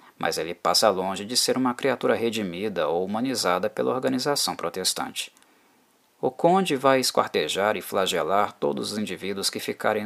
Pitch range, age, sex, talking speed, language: 100-150 Hz, 20-39, male, 150 wpm, Portuguese